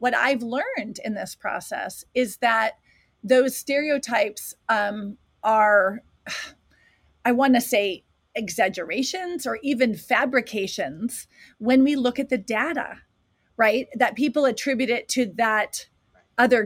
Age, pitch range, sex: 30-49, 215-260 Hz, female